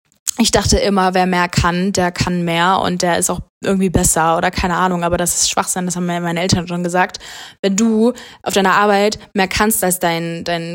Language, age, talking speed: German, 20-39, 210 wpm